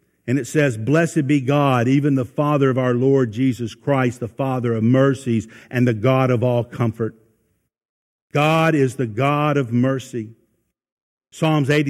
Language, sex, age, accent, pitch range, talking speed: English, male, 50-69, American, 130-220 Hz, 155 wpm